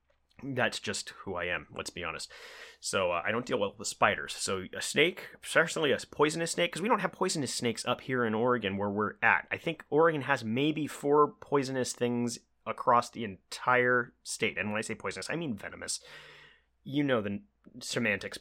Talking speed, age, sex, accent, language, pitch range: 195 wpm, 30-49, male, American, English, 100-150 Hz